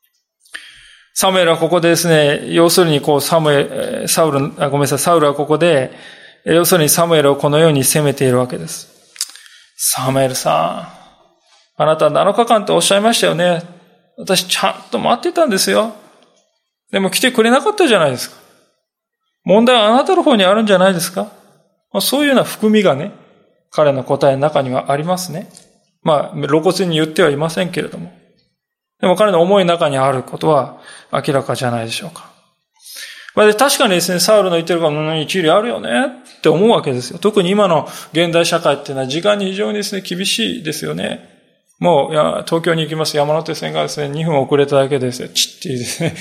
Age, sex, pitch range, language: 20-39, male, 145-205 Hz, Japanese